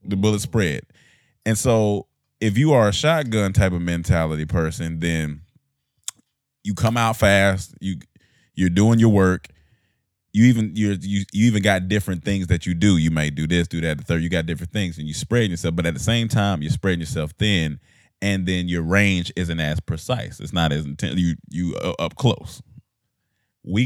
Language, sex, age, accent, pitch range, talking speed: English, male, 20-39, American, 80-110 Hz, 195 wpm